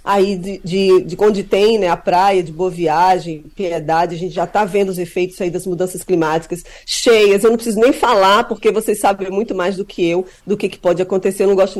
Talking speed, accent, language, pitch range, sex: 235 wpm, Brazilian, Portuguese, 185-225 Hz, female